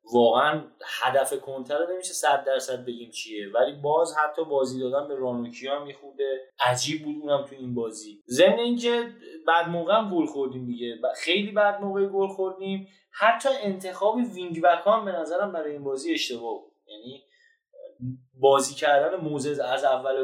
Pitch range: 140-185 Hz